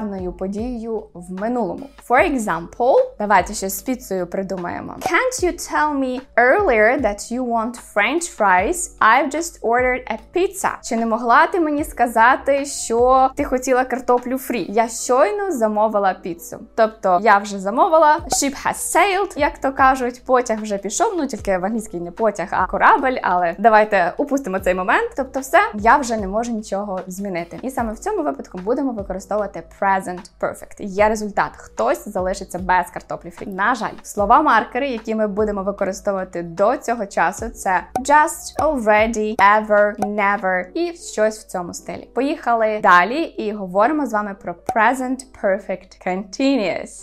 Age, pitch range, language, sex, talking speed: 20-39, 200-260 Hz, Ukrainian, female, 135 wpm